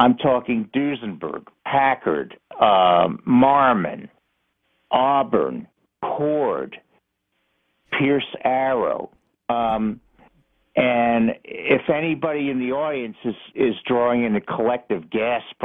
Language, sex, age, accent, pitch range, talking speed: English, male, 60-79, American, 120-170 Hz, 90 wpm